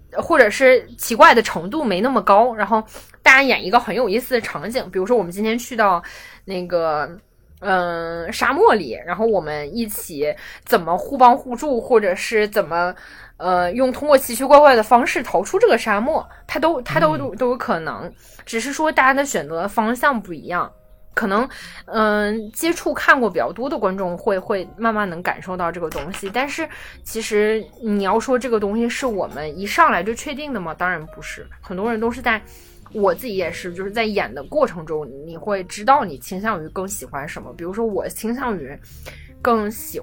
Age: 20-39